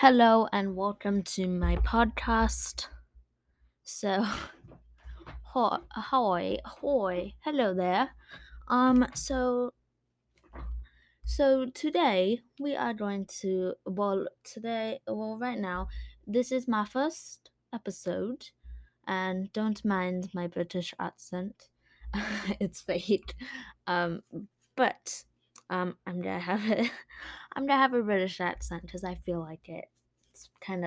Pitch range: 180-235 Hz